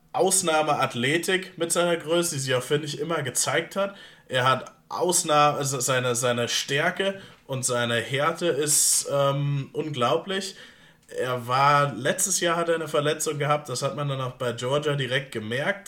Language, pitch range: German, 130-155 Hz